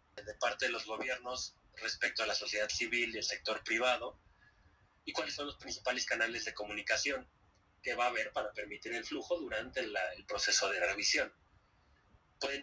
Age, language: 30-49, Spanish